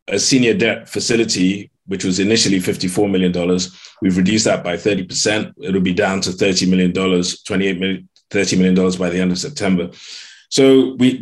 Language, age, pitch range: English, 20-39, 90-110 Hz